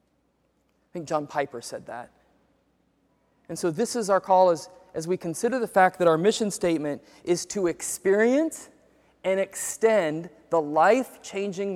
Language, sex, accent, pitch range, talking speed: English, male, American, 170-220 Hz, 150 wpm